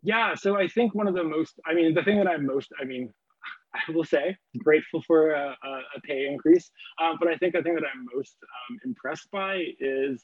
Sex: male